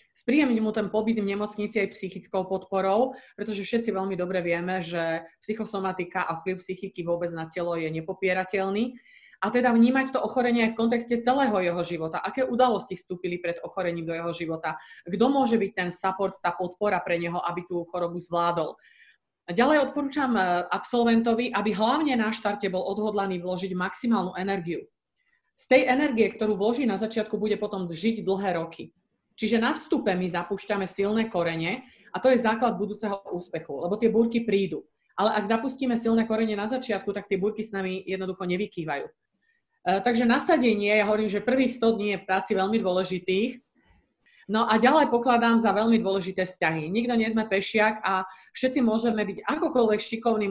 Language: Slovak